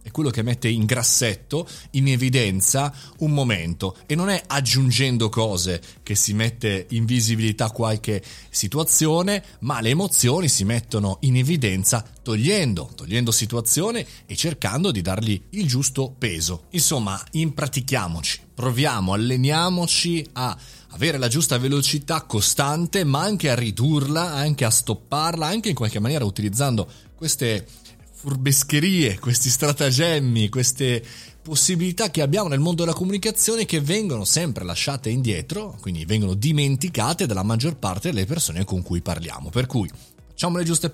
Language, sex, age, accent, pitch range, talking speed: Italian, male, 30-49, native, 110-160 Hz, 140 wpm